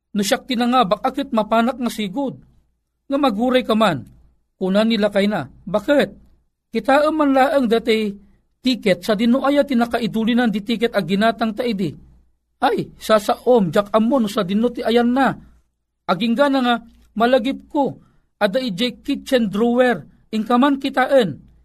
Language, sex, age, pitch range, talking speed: Filipino, male, 40-59, 195-245 Hz, 140 wpm